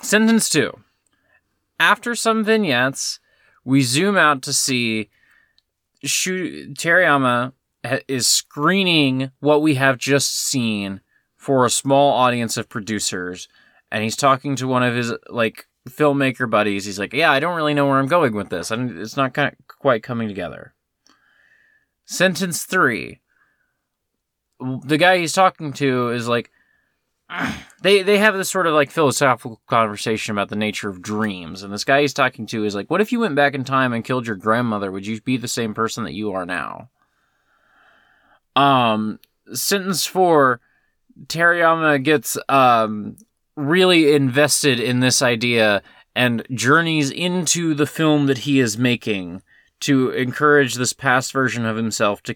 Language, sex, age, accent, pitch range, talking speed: English, male, 20-39, American, 115-150 Hz, 155 wpm